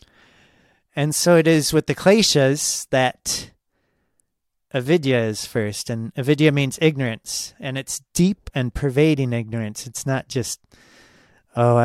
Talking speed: 125 wpm